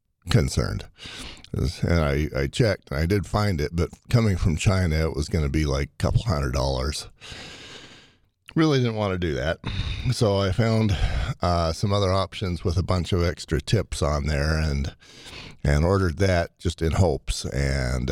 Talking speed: 170 wpm